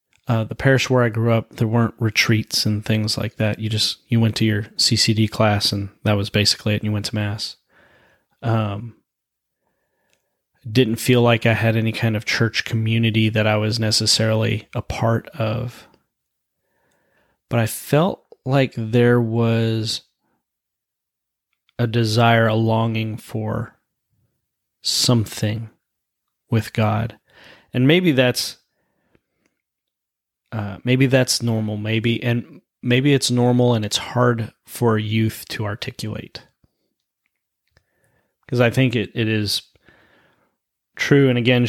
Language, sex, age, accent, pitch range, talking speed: English, male, 30-49, American, 110-120 Hz, 130 wpm